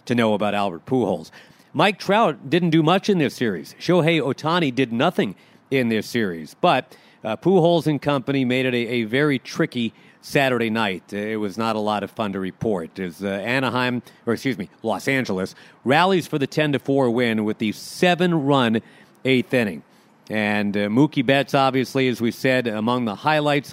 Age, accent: 40-59, American